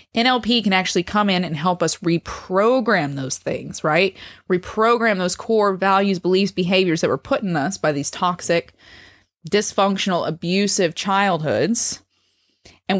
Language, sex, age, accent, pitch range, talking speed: English, female, 20-39, American, 165-210 Hz, 140 wpm